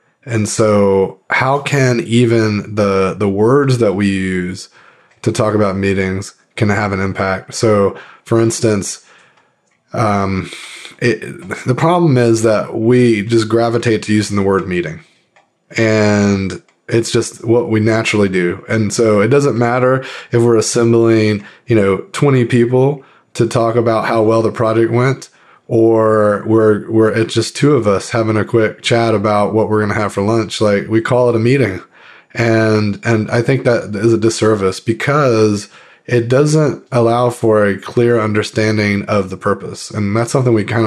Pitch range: 100-120 Hz